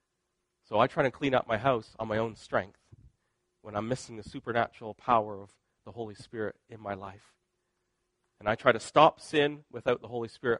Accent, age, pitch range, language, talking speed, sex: American, 40-59, 105-125 Hz, English, 200 wpm, male